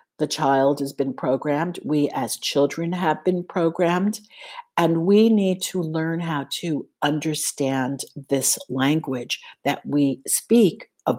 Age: 60-79